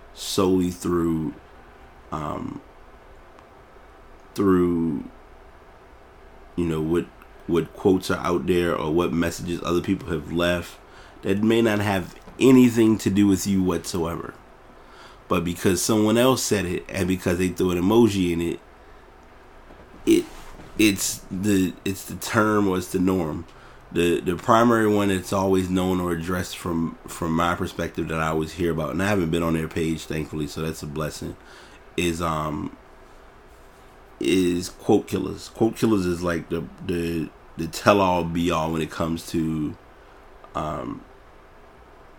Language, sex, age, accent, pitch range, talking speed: English, male, 30-49, American, 85-100 Hz, 145 wpm